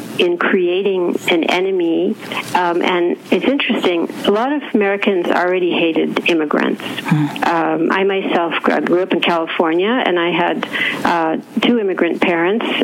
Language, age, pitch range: English, 50-69, 165-235 Hz